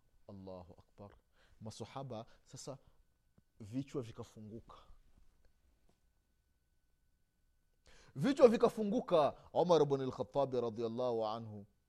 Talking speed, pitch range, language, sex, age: 65 wpm, 100-165 Hz, Swahili, male, 30-49